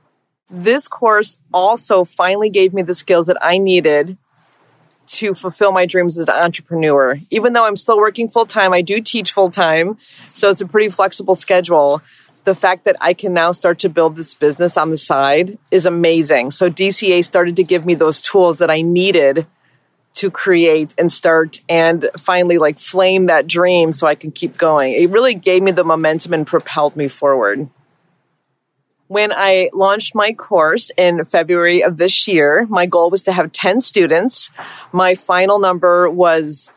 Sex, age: female, 30-49